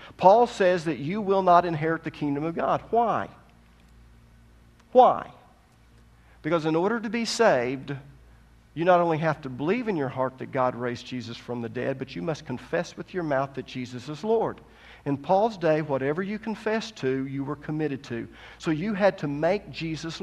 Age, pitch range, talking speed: 50-69, 125-185 Hz, 185 wpm